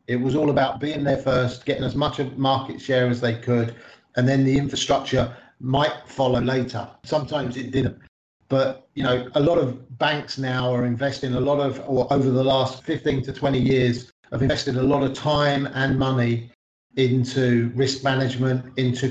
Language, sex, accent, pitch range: Chinese, male, British, 125-140 Hz